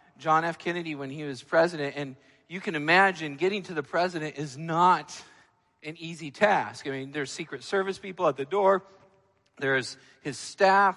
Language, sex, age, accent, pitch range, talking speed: English, male, 40-59, American, 150-205 Hz, 175 wpm